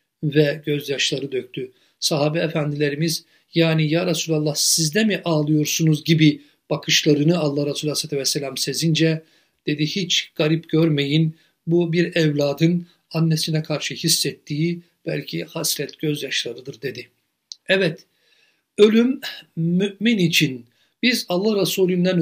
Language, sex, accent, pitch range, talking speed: Turkish, male, native, 150-185 Hz, 105 wpm